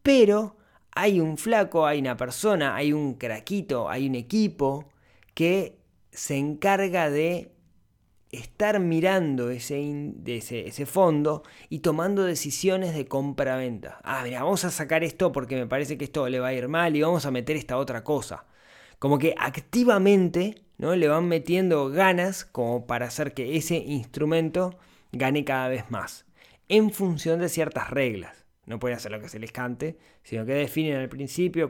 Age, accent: 20-39, Argentinian